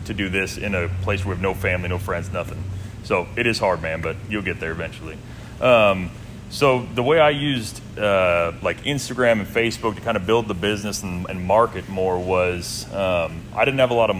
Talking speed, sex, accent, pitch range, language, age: 225 wpm, male, American, 100-120 Hz, English, 30-49